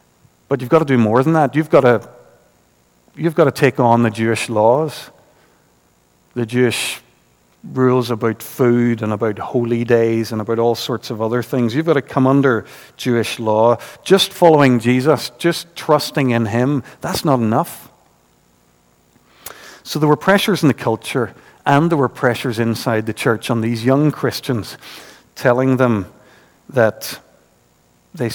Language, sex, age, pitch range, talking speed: English, male, 50-69, 115-145 Hz, 155 wpm